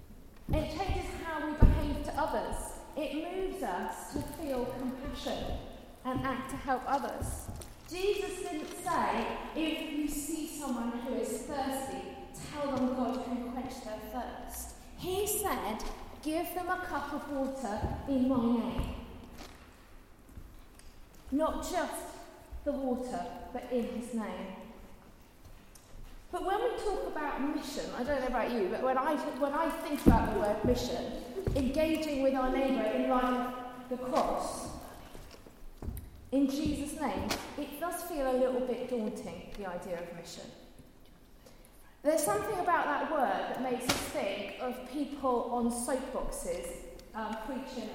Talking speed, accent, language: 140 wpm, British, English